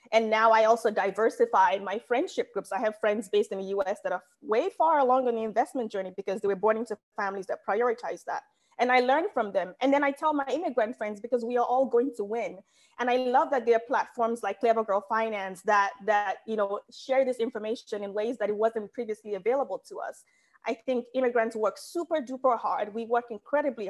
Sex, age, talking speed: female, 20-39, 225 wpm